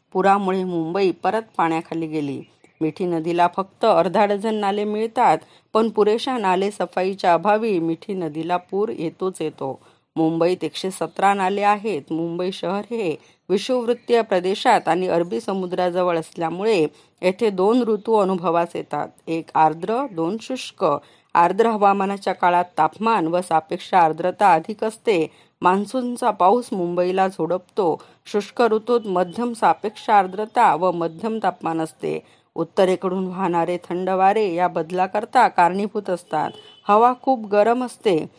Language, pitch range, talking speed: Marathi, 170-210 Hz, 120 wpm